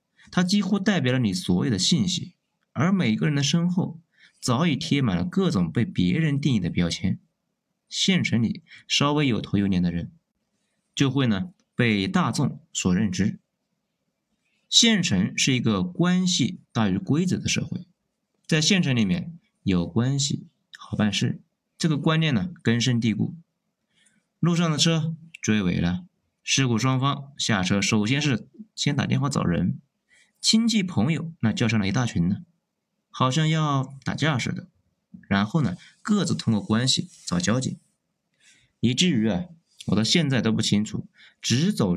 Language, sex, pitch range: Chinese, male, 120-190 Hz